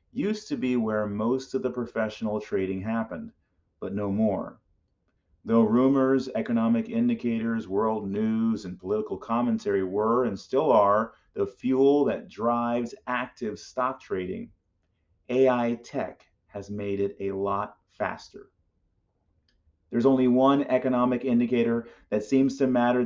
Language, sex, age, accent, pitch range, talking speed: English, male, 40-59, American, 100-135 Hz, 130 wpm